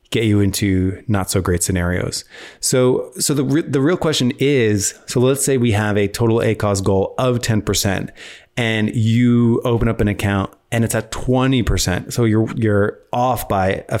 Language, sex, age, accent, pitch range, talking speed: English, male, 30-49, American, 100-120 Hz, 180 wpm